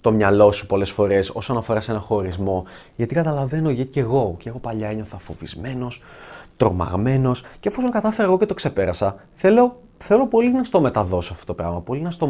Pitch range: 115-155 Hz